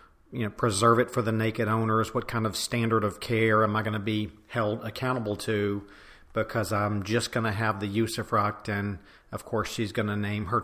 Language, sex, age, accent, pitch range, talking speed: English, male, 40-59, American, 110-120 Hz, 215 wpm